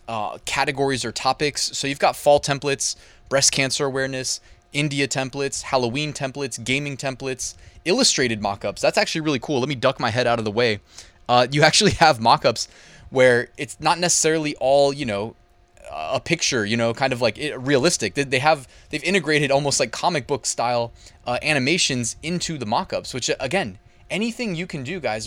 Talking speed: 175 wpm